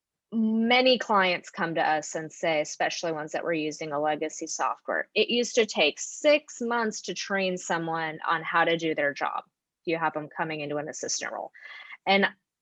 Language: English